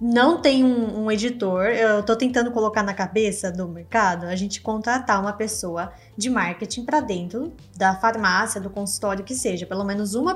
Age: 10-29